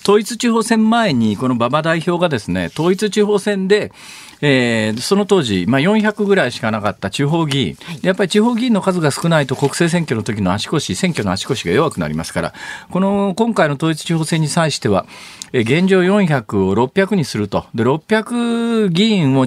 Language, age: Japanese, 40-59